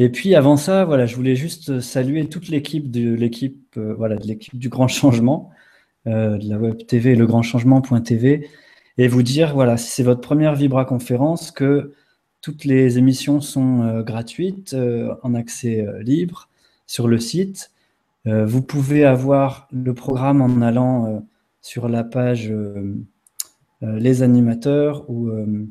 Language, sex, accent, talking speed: French, male, French, 160 wpm